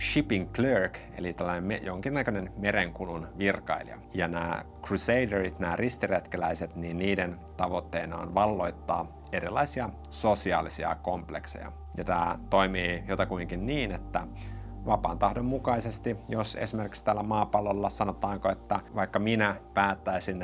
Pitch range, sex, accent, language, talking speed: 85-100 Hz, male, native, Finnish, 110 wpm